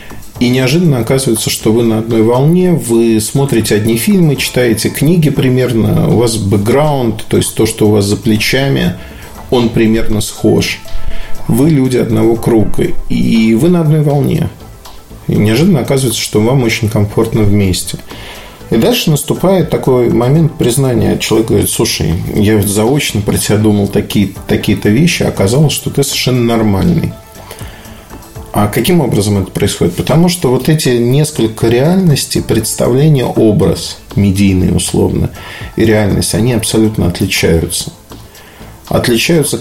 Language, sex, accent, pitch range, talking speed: Russian, male, native, 105-135 Hz, 135 wpm